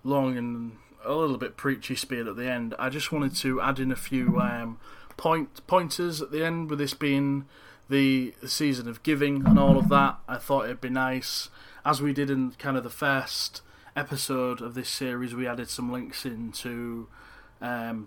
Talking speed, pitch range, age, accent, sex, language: 195 wpm, 115-135 Hz, 30-49, British, male, English